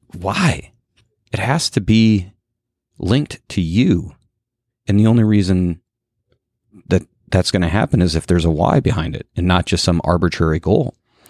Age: 30-49